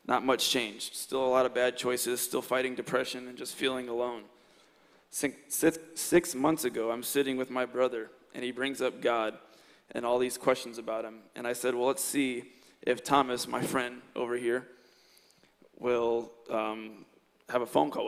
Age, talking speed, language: 20-39, 180 wpm, English